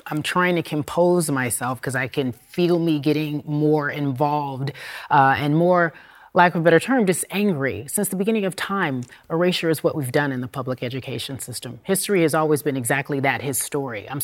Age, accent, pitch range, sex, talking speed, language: 30-49, American, 135-175 Hz, female, 200 wpm, English